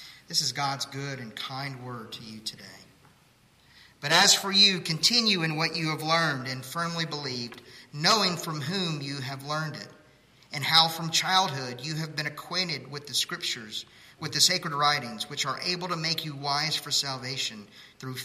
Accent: American